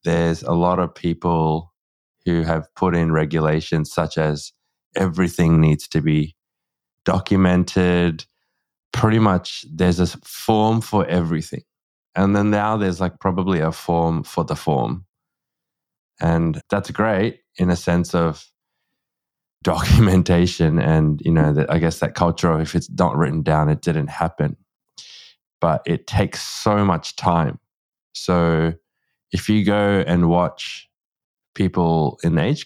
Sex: male